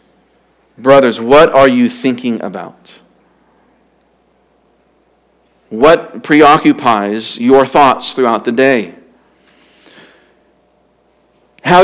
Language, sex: English, male